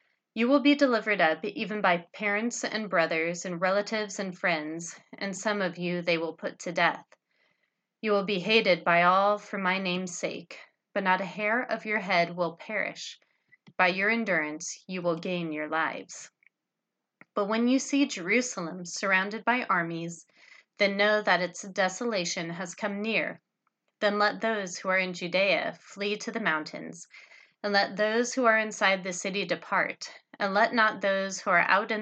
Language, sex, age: English, female, 30-49